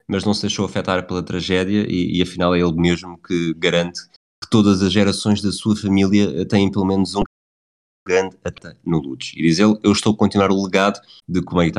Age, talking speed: 20-39, 210 wpm